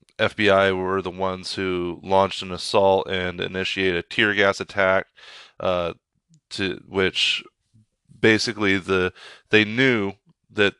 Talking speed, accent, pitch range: 120 wpm, American, 95-105 Hz